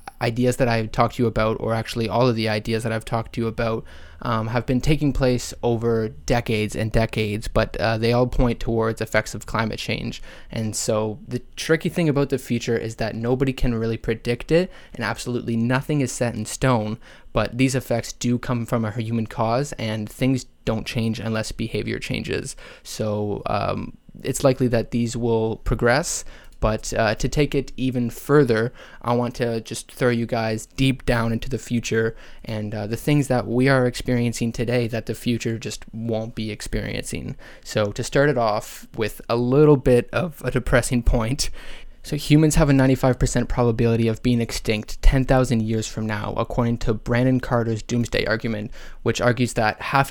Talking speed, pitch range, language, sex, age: 185 wpm, 110-125 Hz, English, male, 20-39